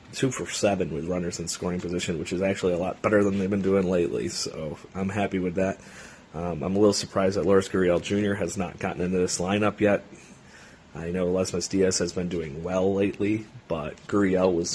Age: 30-49